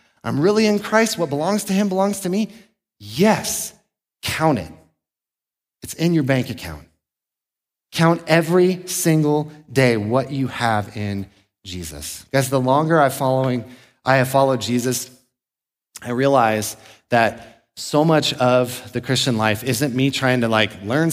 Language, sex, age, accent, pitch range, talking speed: English, male, 30-49, American, 105-145 Hz, 145 wpm